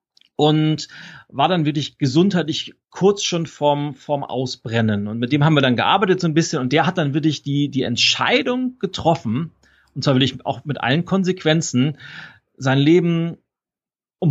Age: 40-59